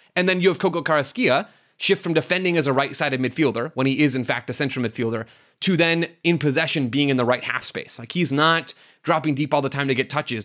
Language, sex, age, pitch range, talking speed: English, male, 20-39, 130-170 Hz, 240 wpm